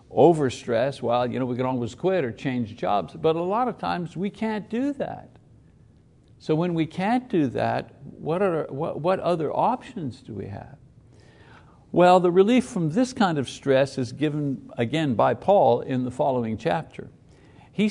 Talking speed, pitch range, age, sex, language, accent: 180 wpm, 125-165 Hz, 60-79, male, English, American